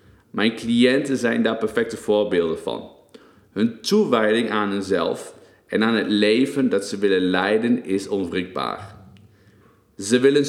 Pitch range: 100-115 Hz